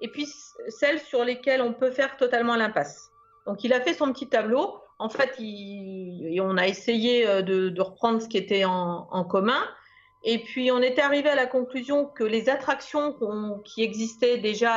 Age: 40-59